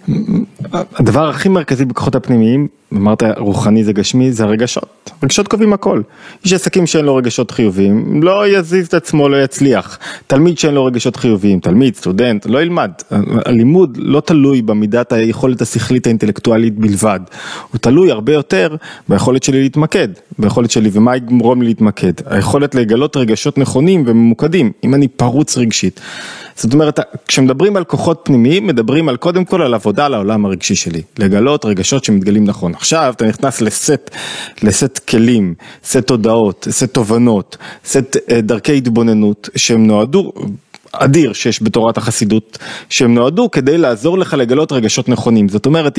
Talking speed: 135 wpm